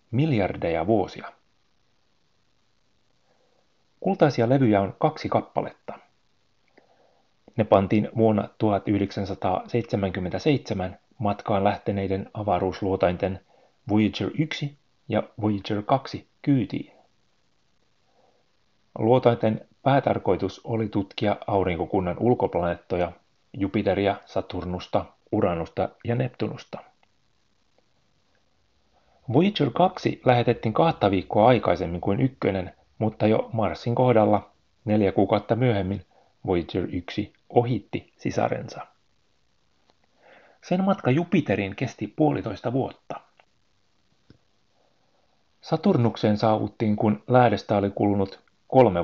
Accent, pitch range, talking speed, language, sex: native, 100-120 Hz, 75 wpm, Finnish, male